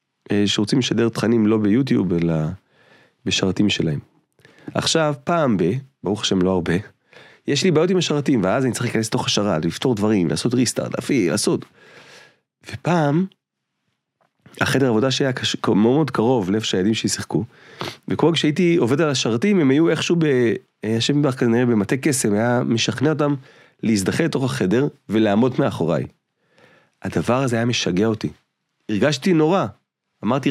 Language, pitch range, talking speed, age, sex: Hebrew, 105-145 Hz, 140 wpm, 30-49, male